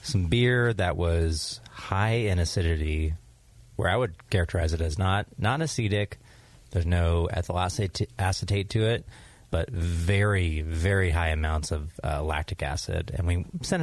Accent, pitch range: American, 85-115 Hz